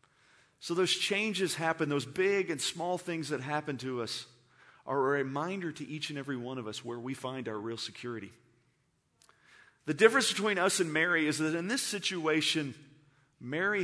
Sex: male